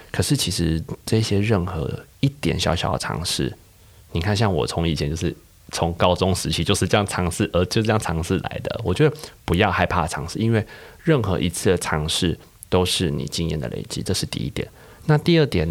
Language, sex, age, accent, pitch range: Chinese, male, 30-49, native, 85-105 Hz